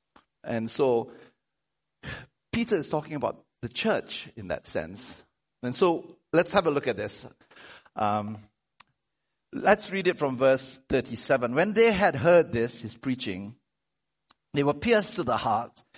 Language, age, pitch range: English, 50-69, 155-230 Hz